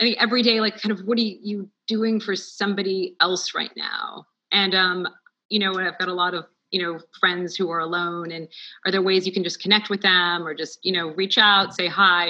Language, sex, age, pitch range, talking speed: English, female, 30-49, 175-210 Hz, 245 wpm